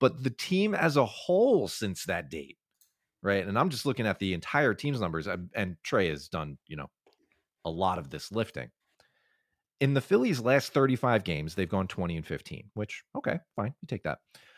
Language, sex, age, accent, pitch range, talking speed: English, male, 30-49, American, 100-145 Hz, 195 wpm